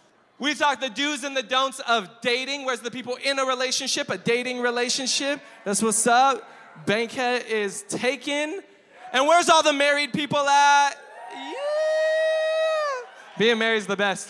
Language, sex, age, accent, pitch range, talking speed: English, male, 20-39, American, 200-300 Hz, 155 wpm